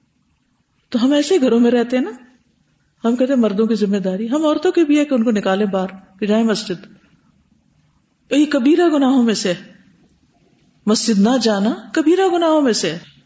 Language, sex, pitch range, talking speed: Urdu, female, 210-295 Hz, 170 wpm